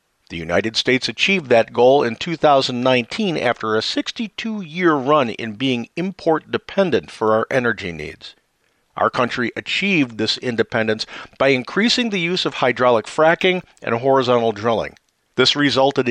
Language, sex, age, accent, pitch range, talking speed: English, male, 50-69, American, 115-155 Hz, 140 wpm